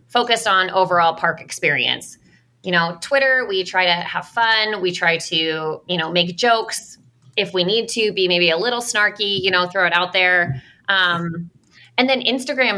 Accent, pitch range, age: American, 165-210 Hz, 20-39